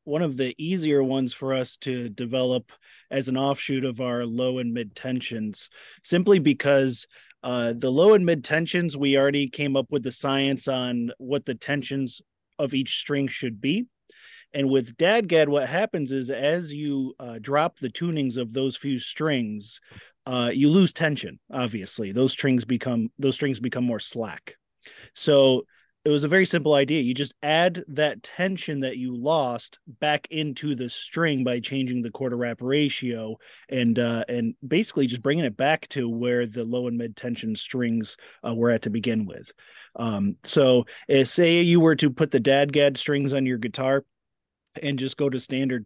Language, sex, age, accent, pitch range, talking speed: English, male, 30-49, American, 125-150 Hz, 180 wpm